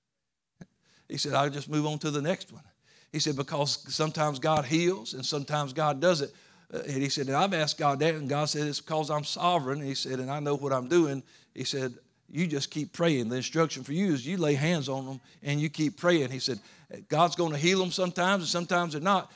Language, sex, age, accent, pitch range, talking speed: English, male, 50-69, American, 150-190 Hz, 230 wpm